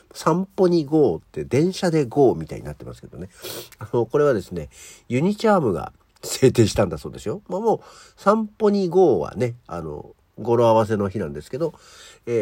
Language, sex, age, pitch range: Japanese, male, 50-69, 110-170 Hz